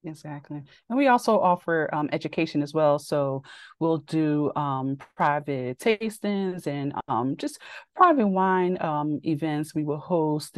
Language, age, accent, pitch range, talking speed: English, 30-49, American, 135-165 Hz, 140 wpm